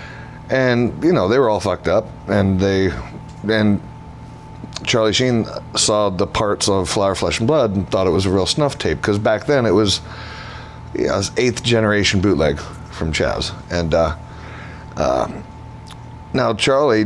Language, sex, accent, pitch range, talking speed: English, male, American, 85-110 Hz, 165 wpm